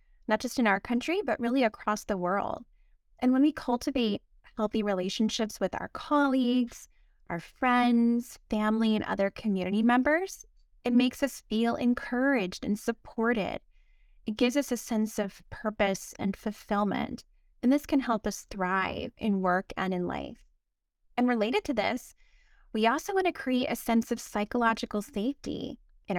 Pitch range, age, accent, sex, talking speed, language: 205-255 Hz, 20-39, American, female, 155 wpm, English